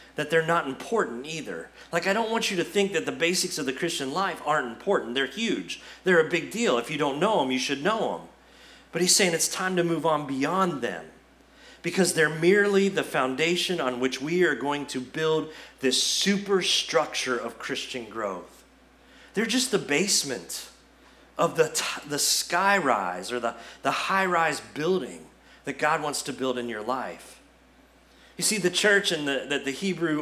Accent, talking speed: American, 190 wpm